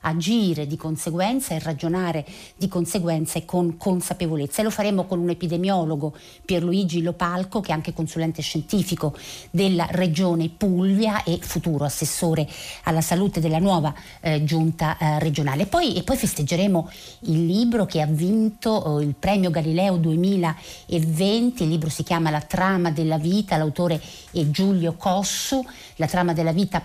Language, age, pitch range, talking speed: Italian, 50-69, 155-195 Hz, 145 wpm